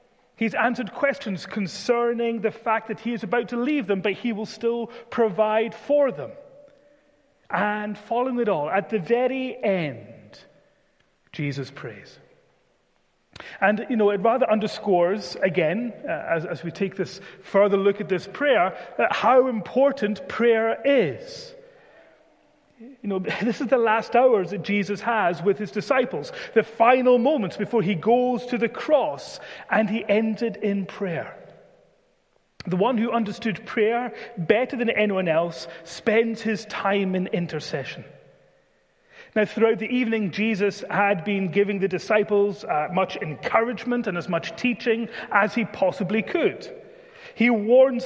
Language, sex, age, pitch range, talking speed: English, male, 30-49, 195-240 Hz, 145 wpm